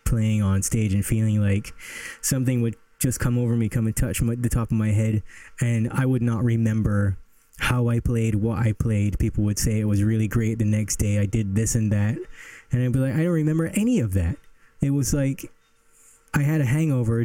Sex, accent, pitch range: male, American, 100-125 Hz